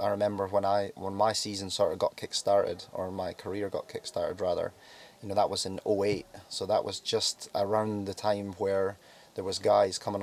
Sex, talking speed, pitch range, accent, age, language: male, 205 wpm, 100-110 Hz, British, 30-49, English